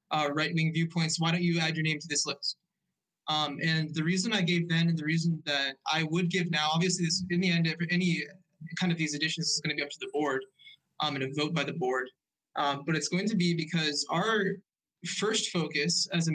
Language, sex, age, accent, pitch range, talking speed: English, male, 20-39, American, 155-175 Hz, 240 wpm